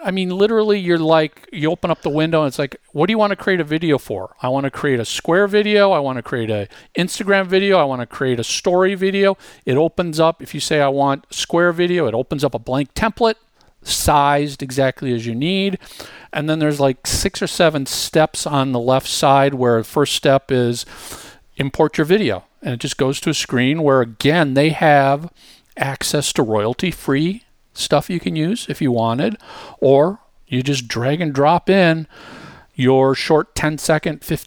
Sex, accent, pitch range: male, American, 135-175 Hz